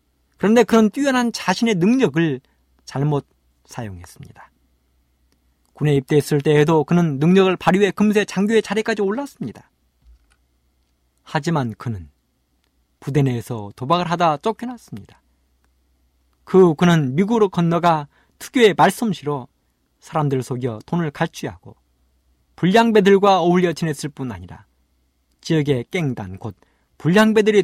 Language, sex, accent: Korean, male, native